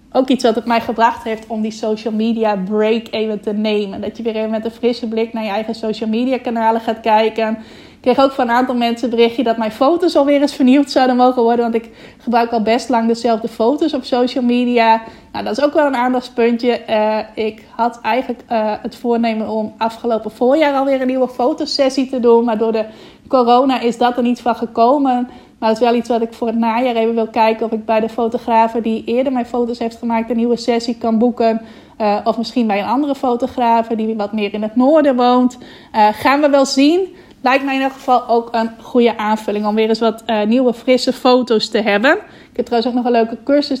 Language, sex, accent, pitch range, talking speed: Dutch, female, Dutch, 225-255 Hz, 230 wpm